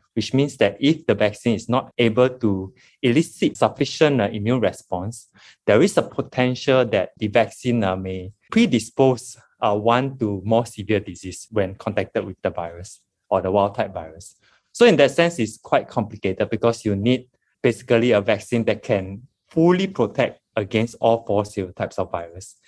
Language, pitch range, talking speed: English, 100-130 Hz, 160 wpm